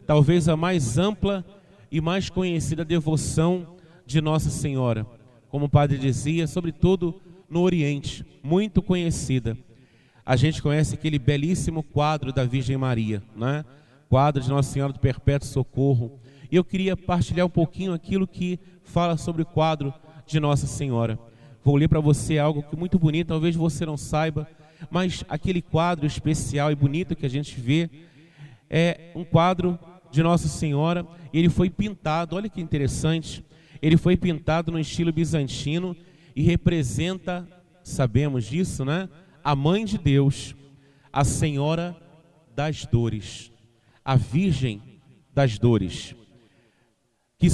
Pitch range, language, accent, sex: 140-170 Hz, Portuguese, Brazilian, male